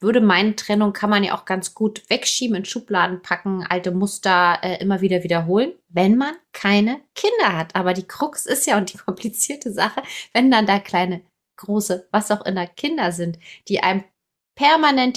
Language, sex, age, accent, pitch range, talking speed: German, female, 20-39, German, 180-220 Hz, 180 wpm